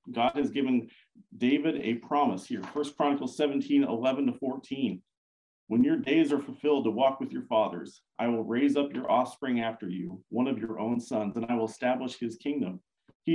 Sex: male